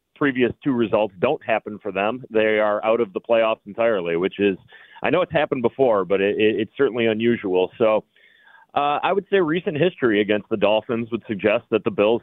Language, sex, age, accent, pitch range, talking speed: English, male, 30-49, American, 100-115 Hz, 195 wpm